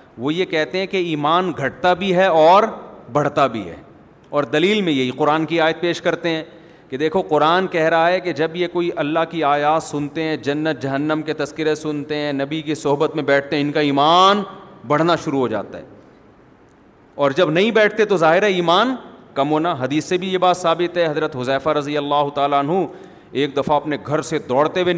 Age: 30-49